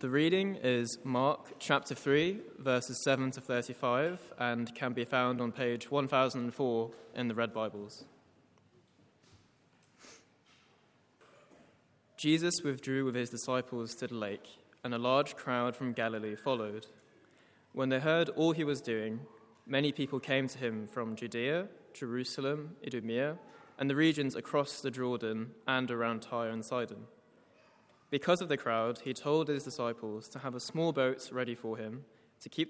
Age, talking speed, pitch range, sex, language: 20-39, 150 wpm, 120-145 Hz, male, English